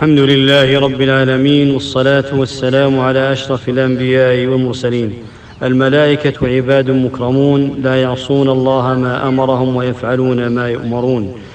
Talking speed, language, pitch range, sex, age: 110 wpm, English, 130-140 Hz, male, 50-69